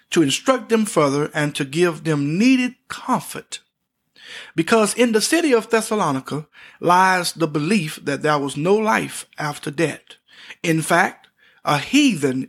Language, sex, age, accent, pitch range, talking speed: English, male, 50-69, American, 150-220 Hz, 145 wpm